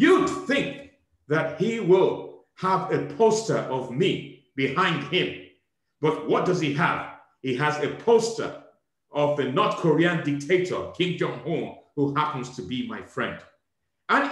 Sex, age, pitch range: male, 50-69, 130-185 Hz